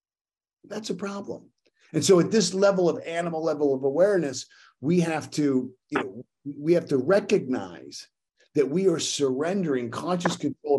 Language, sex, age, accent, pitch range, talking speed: English, male, 50-69, American, 130-185 Hz, 155 wpm